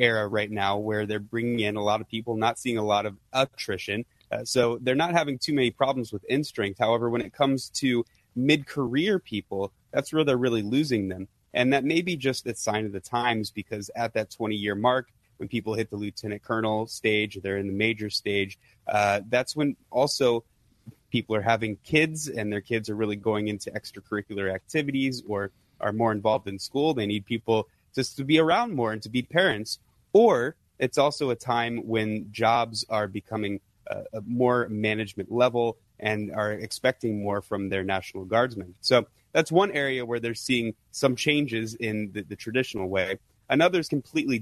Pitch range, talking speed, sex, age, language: 105-130 Hz, 195 wpm, male, 20-39, English